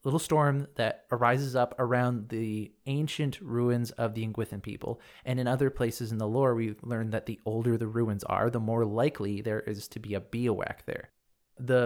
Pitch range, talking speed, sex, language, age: 110-135 Hz, 195 wpm, male, English, 30-49